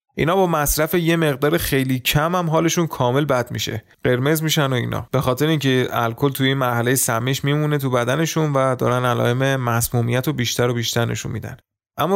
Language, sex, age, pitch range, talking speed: Persian, male, 30-49, 115-140 Hz, 190 wpm